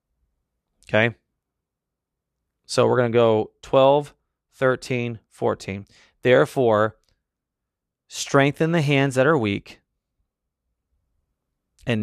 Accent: American